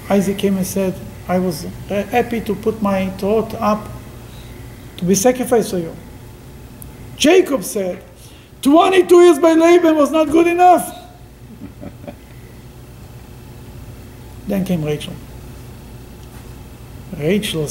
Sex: male